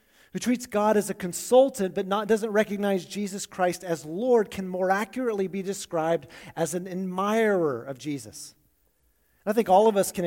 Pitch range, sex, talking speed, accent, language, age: 170-210 Hz, male, 180 wpm, American, English, 30-49